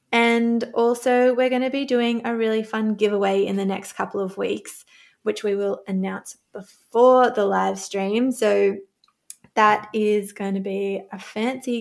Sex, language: female, English